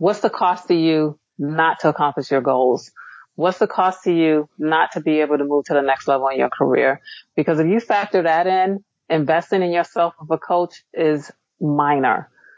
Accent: American